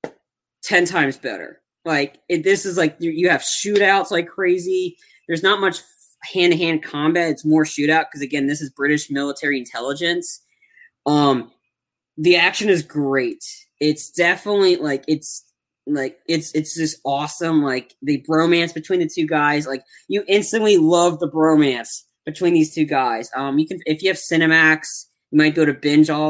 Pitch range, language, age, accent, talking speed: 140-175 Hz, English, 20-39, American, 160 wpm